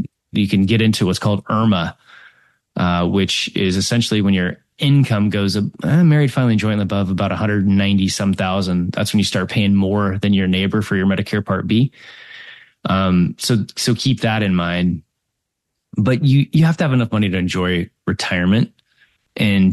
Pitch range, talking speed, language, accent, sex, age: 100-120 Hz, 175 wpm, English, American, male, 20-39